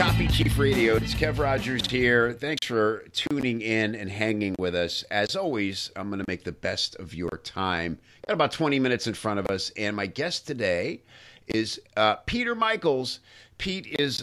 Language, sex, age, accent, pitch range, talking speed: English, male, 50-69, American, 90-115 Hz, 190 wpm